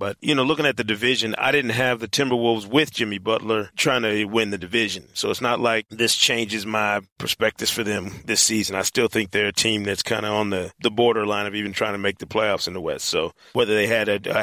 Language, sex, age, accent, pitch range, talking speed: English, male, 40-59, American, 110-130 Hz, 255 wpm